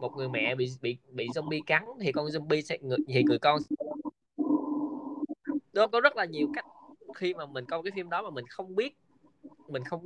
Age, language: 20-39, Vietnamese